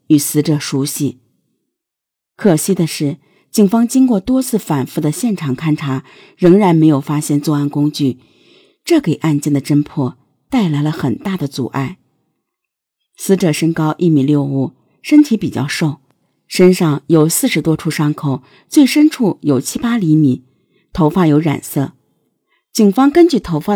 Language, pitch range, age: Chinese, 145-190 Hz, 50-69